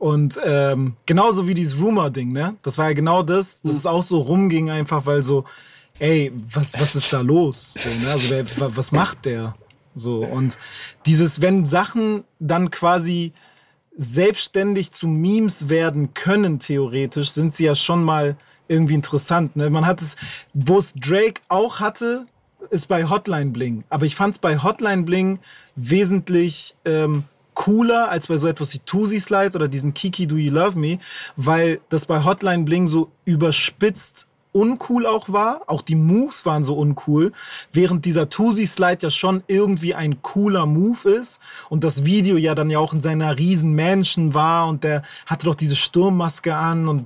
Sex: male